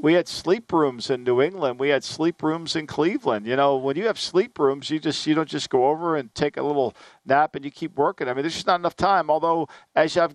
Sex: male